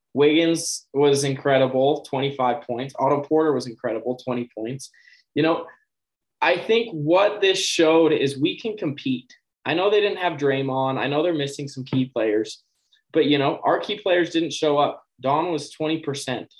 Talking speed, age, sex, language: 170 wpm, 20-39, male, English